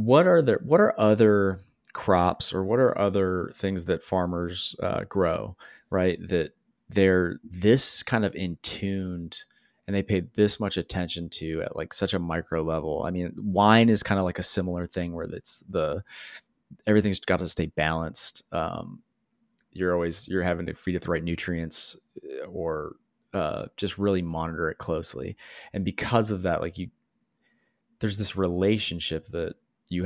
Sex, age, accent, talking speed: male, 30-49, American, 170 wpm